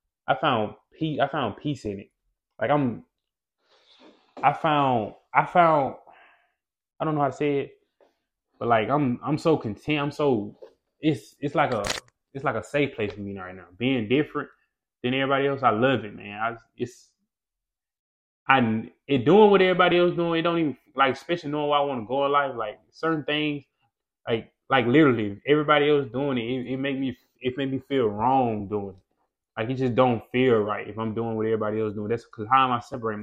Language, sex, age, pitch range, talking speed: English, male, 20-39, 105-135 Hz, 205 wpm